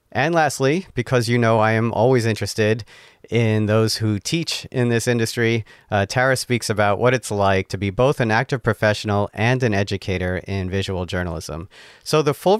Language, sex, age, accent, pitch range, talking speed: English, male, 40-59, American, 105-135 Hz, 180 wpm